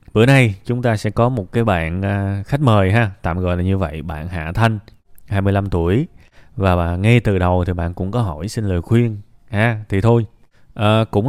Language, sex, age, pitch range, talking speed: Vietnamese, male, 20-39, 95-120 Hz, 200 wpm